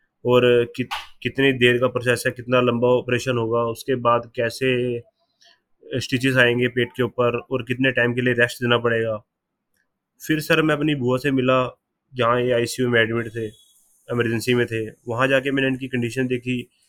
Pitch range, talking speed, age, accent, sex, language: 120-135 Hz, 180 wpm, 20-39, native, male, Hindi